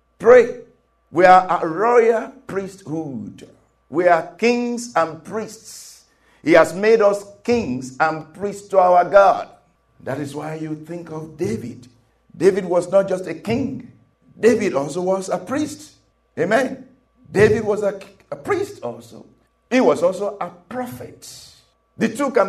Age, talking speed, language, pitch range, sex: 50-69, 145 wpm, English, 135-210 Hz, male